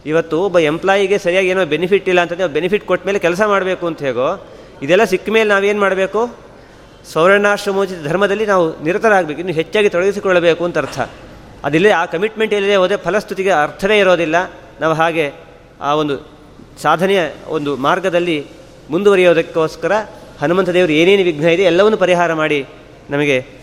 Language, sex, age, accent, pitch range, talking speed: Kannada, male, 30-49, native, 150-190 Hz, 135 wpm